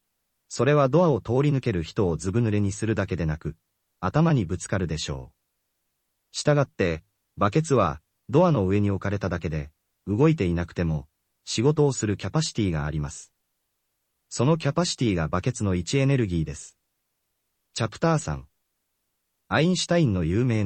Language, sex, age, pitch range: Japanese, male, 40-59, 85-135 Hz